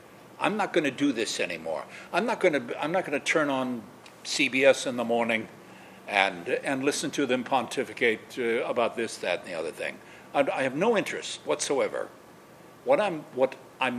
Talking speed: 185 wpm